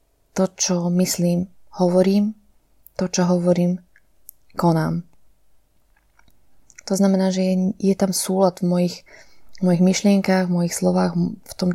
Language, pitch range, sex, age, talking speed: Slovak, 175-190 Hz, female, 20-39, 120 wpm